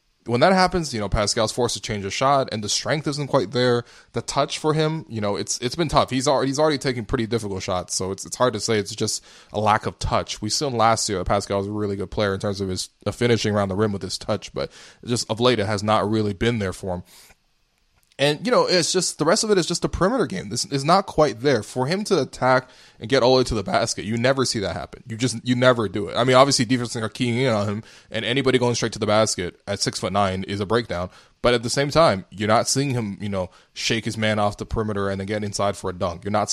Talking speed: 285 wpm